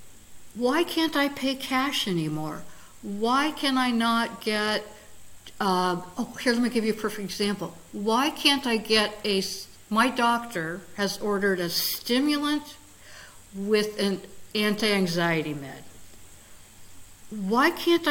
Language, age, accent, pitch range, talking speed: English, 60-79, American, 180-260 Hz, 125 wpm